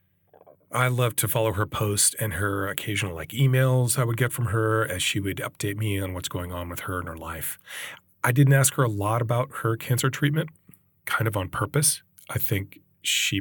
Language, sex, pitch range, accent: English, male, 90-130 Hz, American